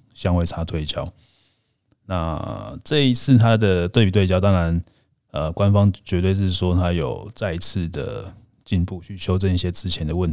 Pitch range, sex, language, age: 90-110 Hz, male, Chinese, 20-39